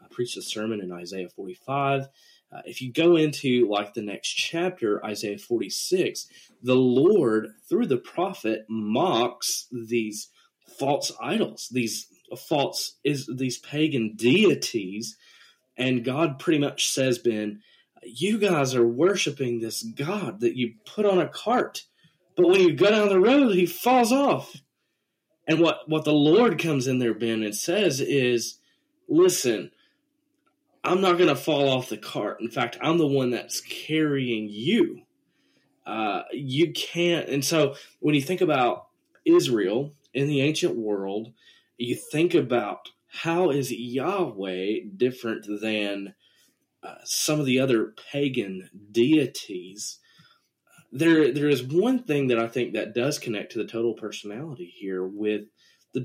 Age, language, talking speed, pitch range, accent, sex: 30-49, English, 145 wpm, 110-165 Hz, American, male